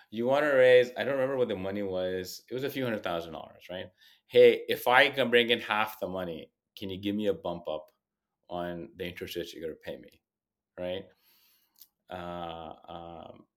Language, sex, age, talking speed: English, male, 30-49, 205 wpm